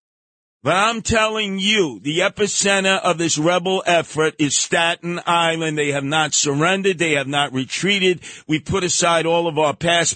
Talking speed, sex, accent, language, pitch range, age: 165 wpm, male, American, English, 140-185 Hz, 50-69